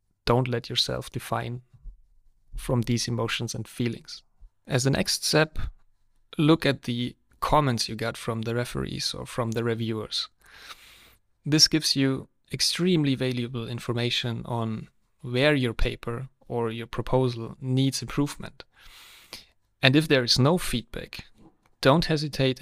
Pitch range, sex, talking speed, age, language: 120-140 Hz, male, 130 wpm, 30-49, English